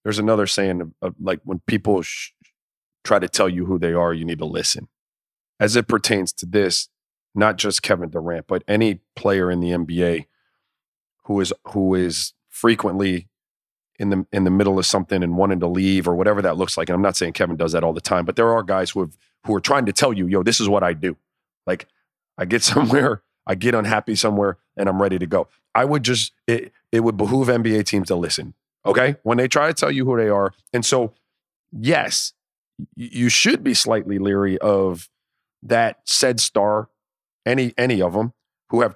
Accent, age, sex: American, 30-49, male